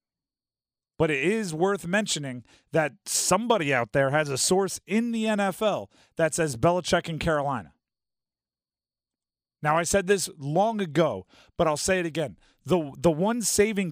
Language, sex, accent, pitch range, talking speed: English, male, American, 145-190 Hz, 150 wpm